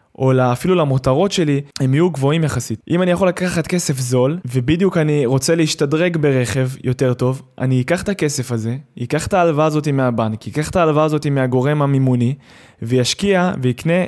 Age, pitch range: 20-39, 130-165 Hz